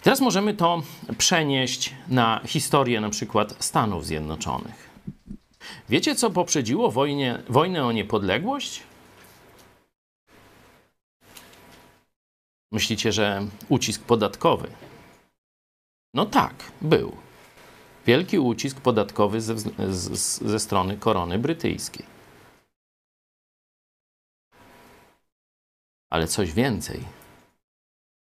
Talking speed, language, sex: 75 wpm, Polish, male